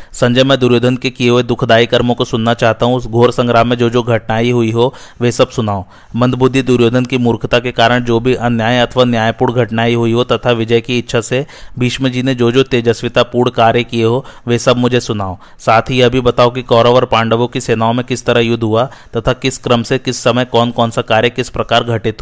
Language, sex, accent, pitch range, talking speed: Hindi, male, native, 115-125 Hz, 230 wpm